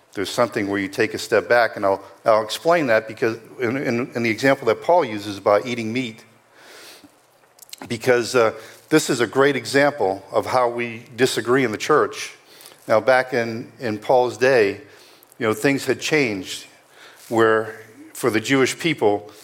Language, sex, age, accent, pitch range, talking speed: English, male, 50-69, American, 110-135 Hz, 170 wpm